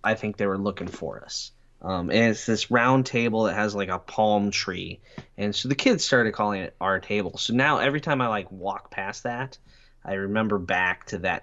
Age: 20-39